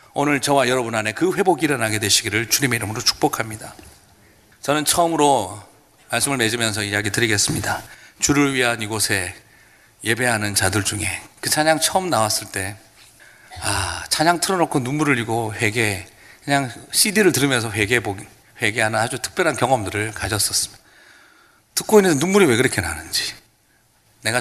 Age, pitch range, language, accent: 40-59, 105-145 Hz, Korean, native